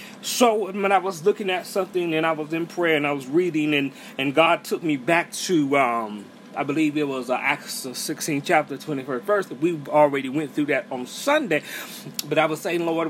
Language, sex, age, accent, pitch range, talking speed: English, male, 30-49, American, 160-210 Hz, 200 wpm